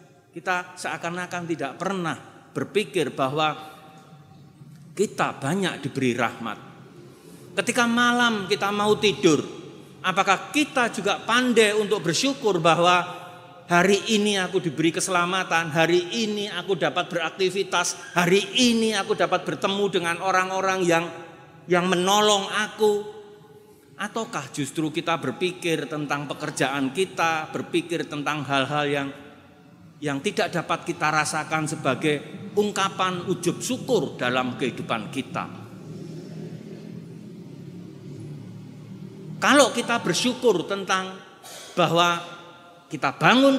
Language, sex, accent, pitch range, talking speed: Indonesian, male, native, 155-200 Hz, 100 wpm